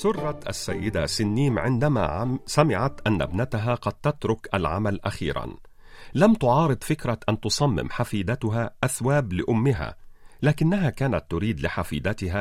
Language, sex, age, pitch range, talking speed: Arabic, male, 40-59, 105-145 Hz, 110 wpm